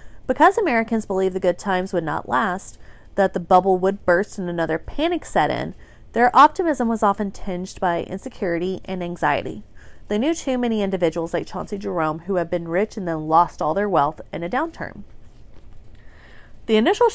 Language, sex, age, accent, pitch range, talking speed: English, female, 30-49, American, 175-235 Hz, 180 wpm